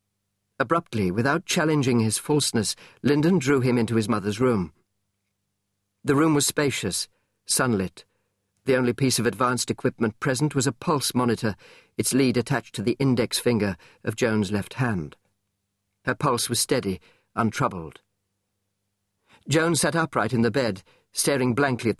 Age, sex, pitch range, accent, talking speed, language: 50-69, male, 100-130 Hz, British, 145 wpm, English